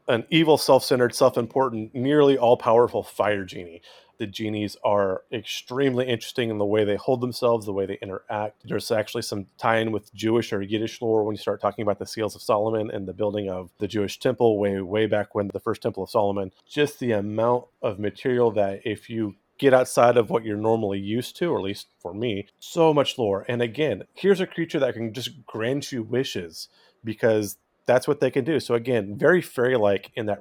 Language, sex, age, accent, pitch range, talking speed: English, male, 30-49, American, 105-125 Hz, 205 wpm